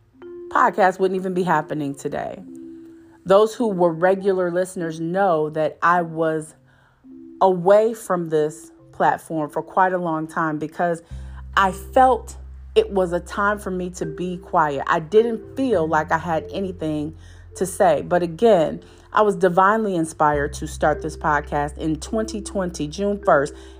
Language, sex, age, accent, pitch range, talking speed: English, female, 40-59, American, 150-210 Hz, 150 wpm